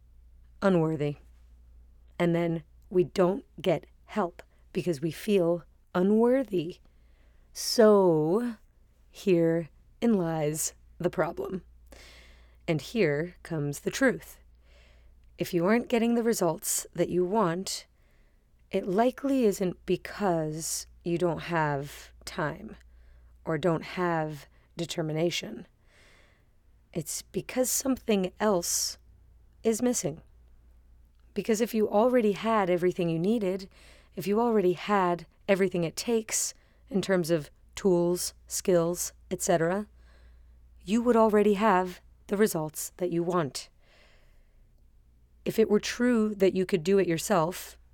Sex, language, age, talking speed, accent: female, English, 30-49, 110 wpm, American